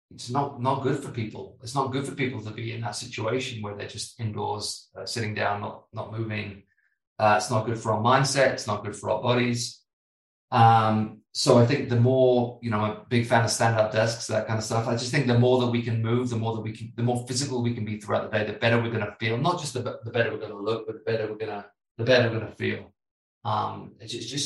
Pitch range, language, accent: 110-130 Hz, English, British